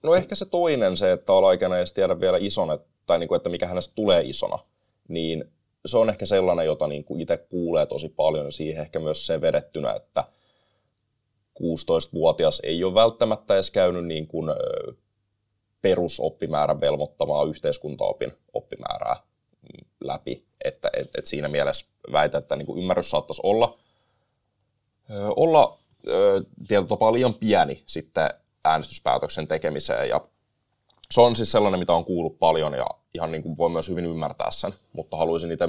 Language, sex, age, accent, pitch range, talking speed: Finnish, male, 20-39, native, 80-130 Hz, 150 wpm